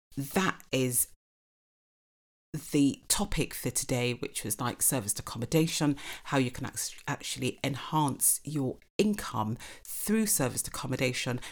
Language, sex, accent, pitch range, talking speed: English, female, British, 125-150 Hz, 115 wpm